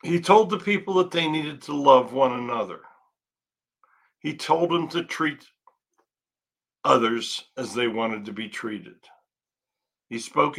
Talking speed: 140 wpm